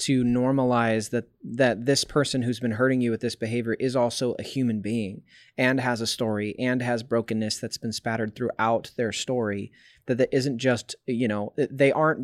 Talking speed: 190 wpm